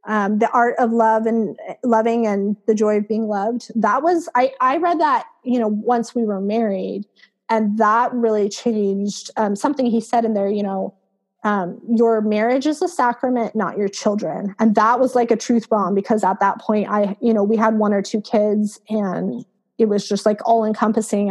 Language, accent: English, American